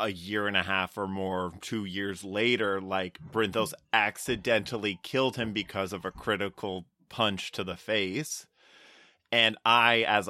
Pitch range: 95-110 Hz